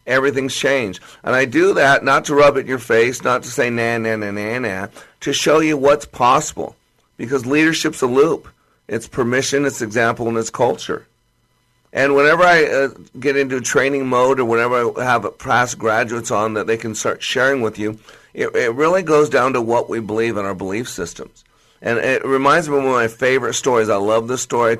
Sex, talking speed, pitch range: male, 210 wpm, 115-140 Hz